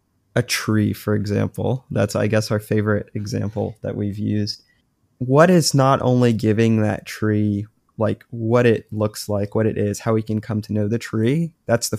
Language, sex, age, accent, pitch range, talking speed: English, male, 20-39, American, 105-120 Hz, 190 wpm